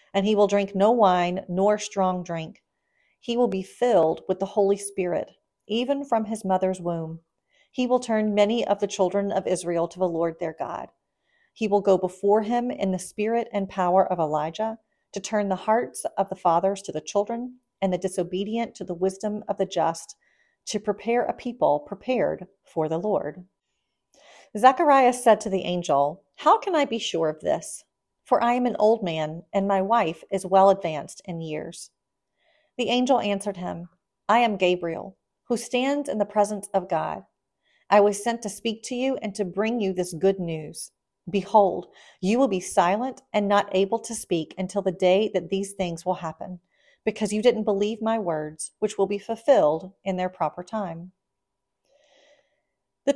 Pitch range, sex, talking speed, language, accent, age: 180-225 Hz, female, 185 wpm, English, American, 40-59